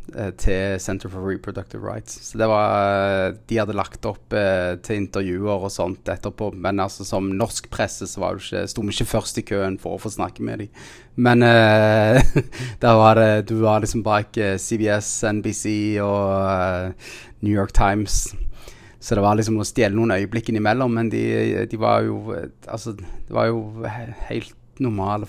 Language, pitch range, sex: English, 105-120 Hz, male